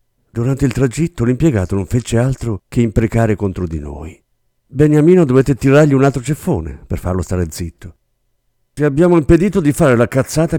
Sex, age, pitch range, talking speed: male, 50-69, 100-150 Hz, 165 wpm